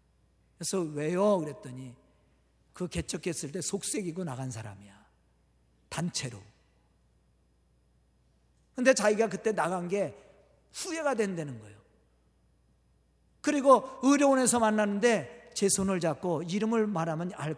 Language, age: Korean, 40-59